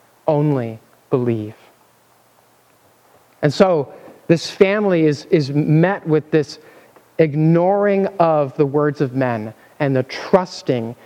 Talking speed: 110 wpm